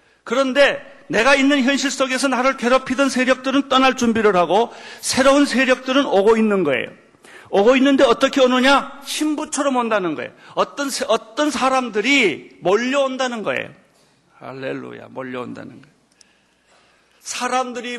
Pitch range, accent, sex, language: 185-260 Hz, native, male, Korean